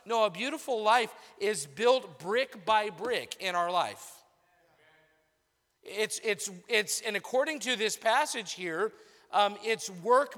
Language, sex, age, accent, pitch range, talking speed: English, male, 50-69, American, 205-260 Hz, 140 wpm